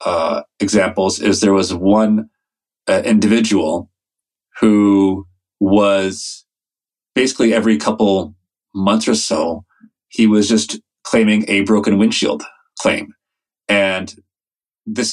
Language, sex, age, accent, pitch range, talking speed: English, male, 30-49, American, 95-110 Hz, 105 wpm